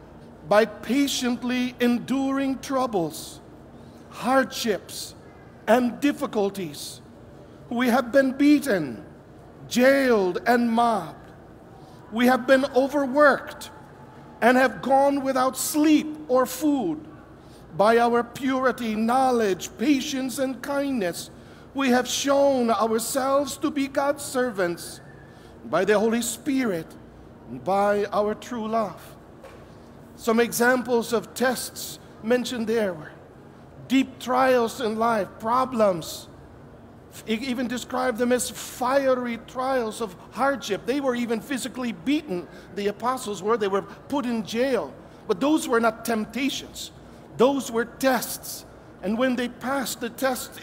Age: 50-69